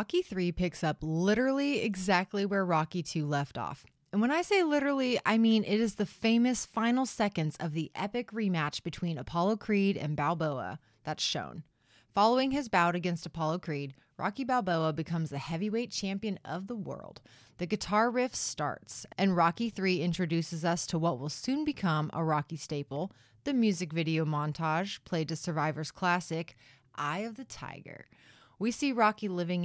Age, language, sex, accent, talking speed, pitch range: 20-39, English, female, American, 170 wpm, 155-215 Hz